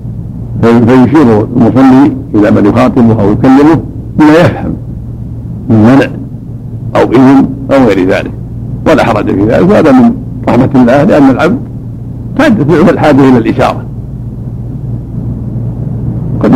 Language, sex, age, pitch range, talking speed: Arabic, male, 60-79, 115-125 Hz, 115 wpm